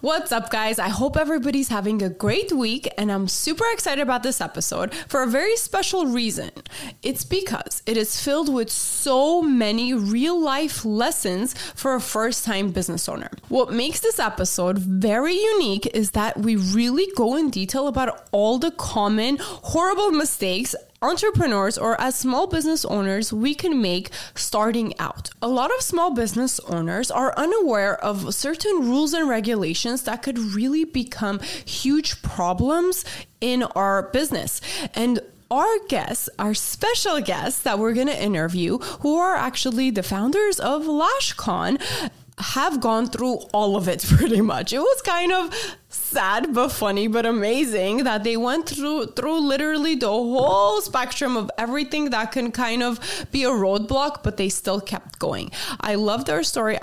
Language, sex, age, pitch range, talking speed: English, female, 20-39, 210-290 Hz, 160 wpm